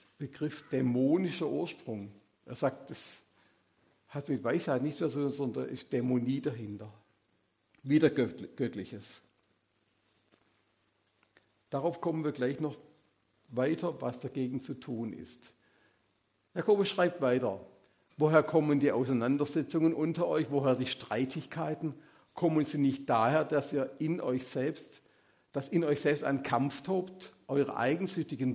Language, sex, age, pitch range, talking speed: German, male, 50-69, 115-150 Hz, 130 wpm